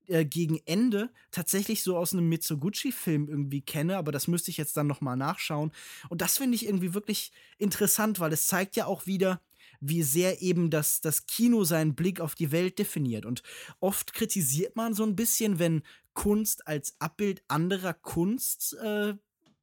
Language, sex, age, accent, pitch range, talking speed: German, male, 20-39, German, 155-205 Hz, 175 wpm